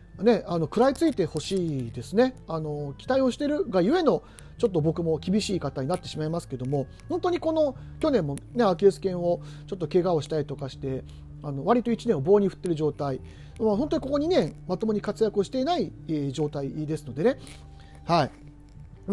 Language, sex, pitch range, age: Japanese, male, 150-230 Hz, 40-59